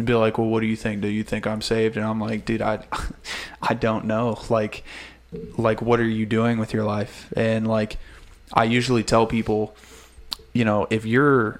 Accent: American